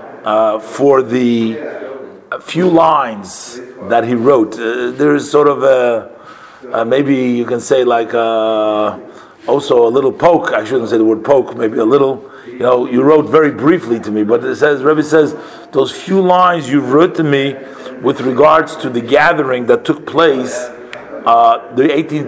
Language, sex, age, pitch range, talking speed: English, male, 50-69, 115-150 Hz, 170 wpm